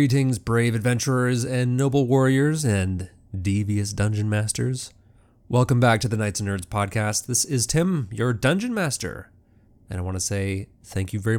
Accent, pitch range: American, 105-125 Hz